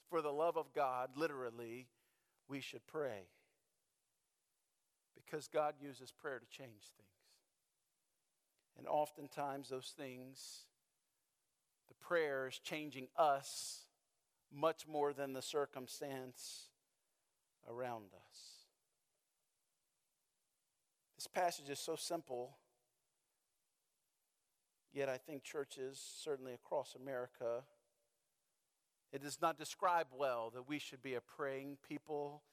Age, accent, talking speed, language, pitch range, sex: 50-69, American, 105 wpm, English, 130-150 Hz, male